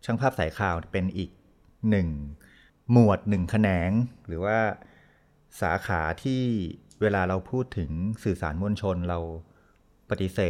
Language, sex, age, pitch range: Thai, male, 30-49, 90-110 Hz